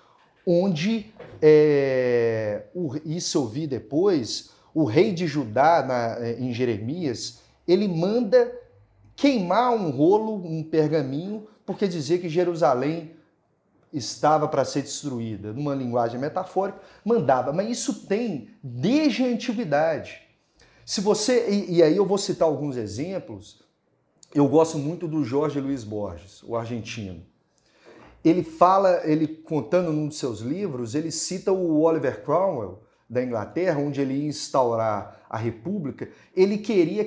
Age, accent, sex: 40-59, Brazilian, male